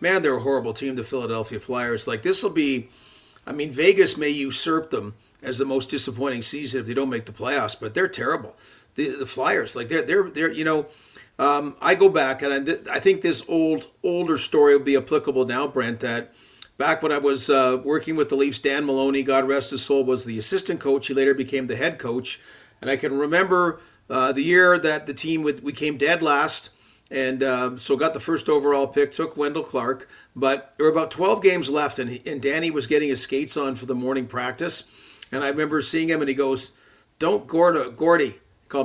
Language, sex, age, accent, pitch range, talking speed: English, male, 40-59, American, 130-155 Hz, 220 wpm